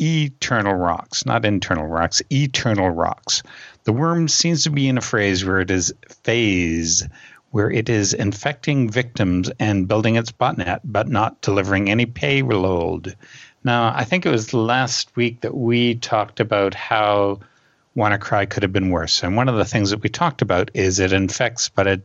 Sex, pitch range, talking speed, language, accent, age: male, 95-120 Hz, 175 wpm, English, American, 60-79